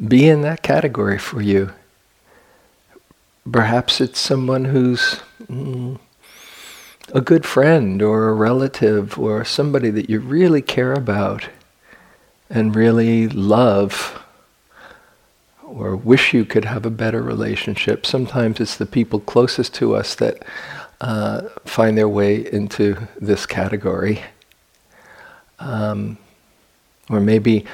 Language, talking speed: English, 115 wpm